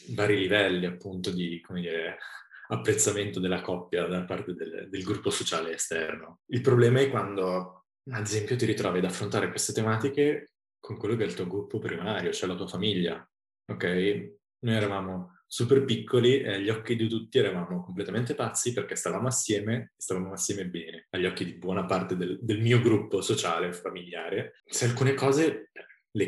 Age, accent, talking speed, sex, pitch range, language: 20-39, native, 175 wpm, male, 95-120 Hz, Italian